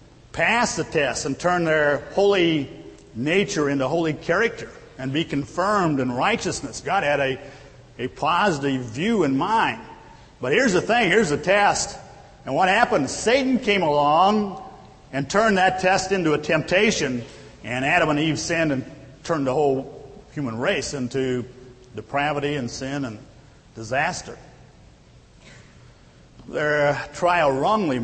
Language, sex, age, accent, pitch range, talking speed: English, male, 50-69, American, 130-175 Hz, 135 wpm